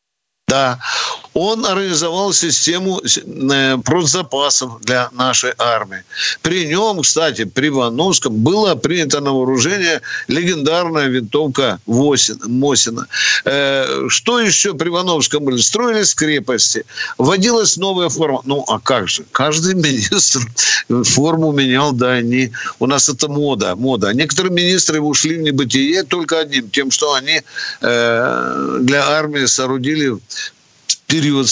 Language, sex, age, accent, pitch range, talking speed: Russian, male, 50-69, native, 130-190 Hz, 110 wpm